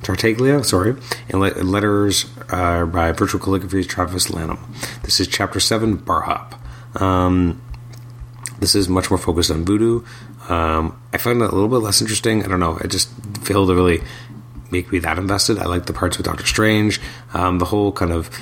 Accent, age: American, 30-49